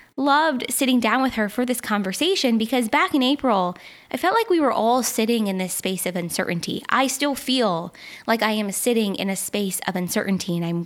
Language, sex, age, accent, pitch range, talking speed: English, female, 20-39, American, 195-260 Hz, 210 wpm